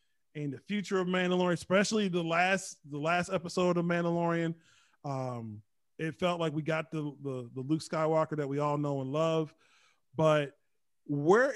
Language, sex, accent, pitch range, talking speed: English, male, American, 145-180 Hz, 165 wpm